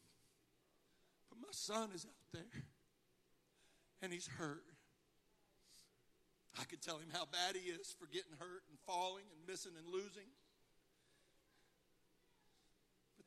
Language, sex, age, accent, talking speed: English, male, 50-69, American, 120 wpm